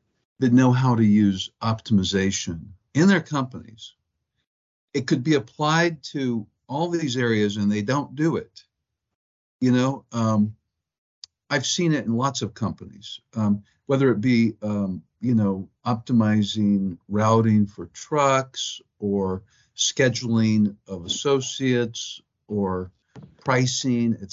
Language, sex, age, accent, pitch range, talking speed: English, male, 50-69, American, 100-130 Hz, 125 wpm